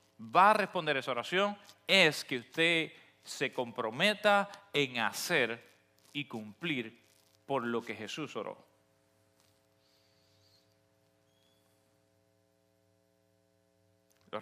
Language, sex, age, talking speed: Spanish, male, 40-59, 85 wpm